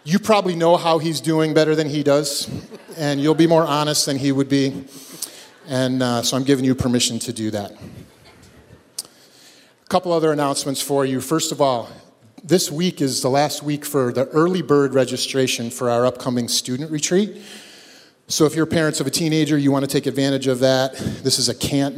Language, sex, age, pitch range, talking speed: English, male, 40-59, 125-150 Hz, 195 wpm